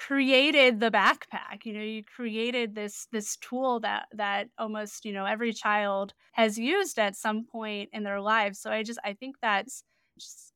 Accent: American